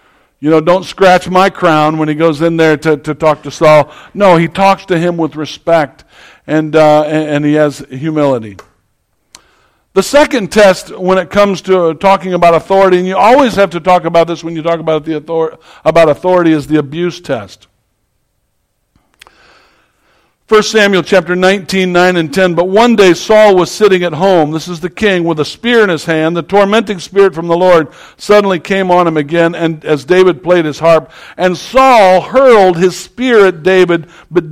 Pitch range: 150-185 Hz